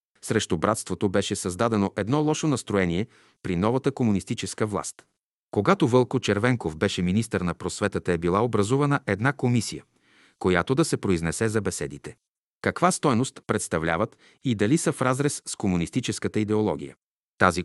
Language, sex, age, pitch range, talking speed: Bulgarian, male, 40-59, 95-130 Hz, 140 wpm